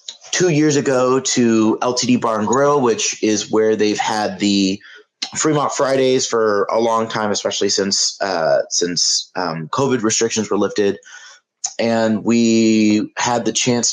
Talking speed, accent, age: 140 wpm, American, 30-49